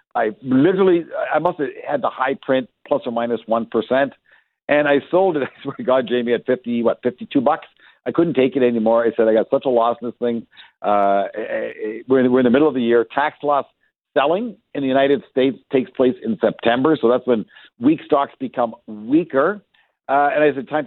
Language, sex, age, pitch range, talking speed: English, male, 50-69, 115-155 Hz, 220 wpm